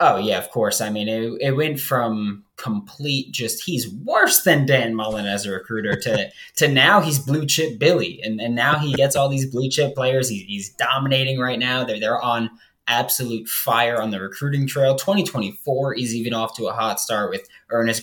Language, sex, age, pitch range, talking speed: English, male, 20-39, 110-145 Hz, 195 wpm